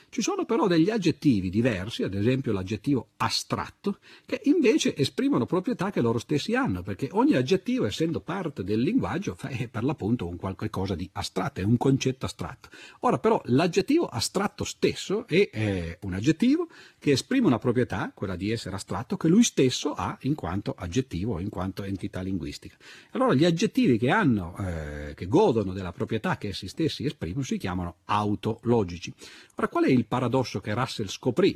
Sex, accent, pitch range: male, native, 95-155 Hz